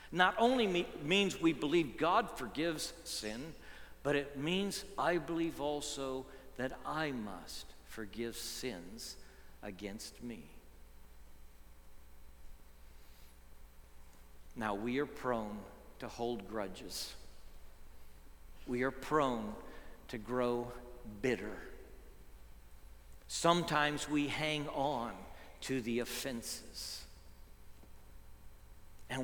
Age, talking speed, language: 50-69, 85 wpm, English